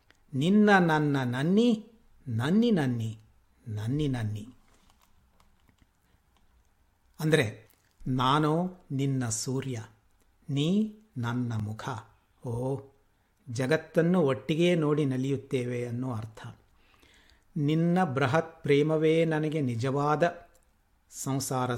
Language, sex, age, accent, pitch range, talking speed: Kannada, male, 60-79, native, 115-155 Hz, 75 wpm